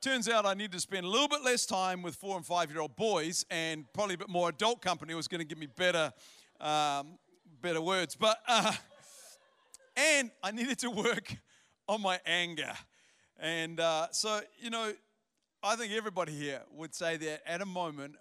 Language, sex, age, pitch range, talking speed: English, male, 40-59, 155-210 Hz, 190 wpm